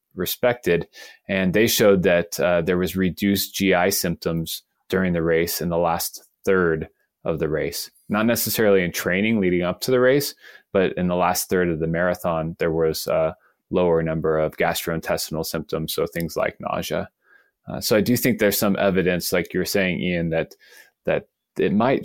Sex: male